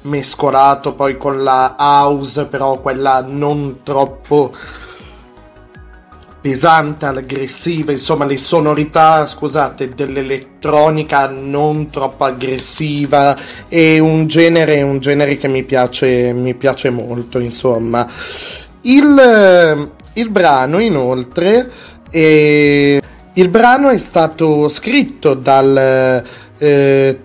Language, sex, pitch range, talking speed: Italian, male, 130-155 Hz, 95 wpm